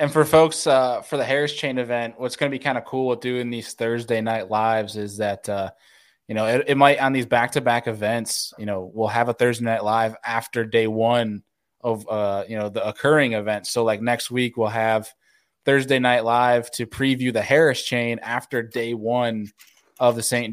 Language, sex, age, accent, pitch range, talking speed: English, male, 20-39, American, 110-130 Hz, 210 wpm